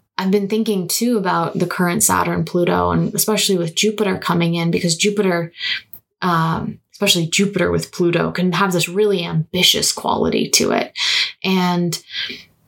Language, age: English, 20-39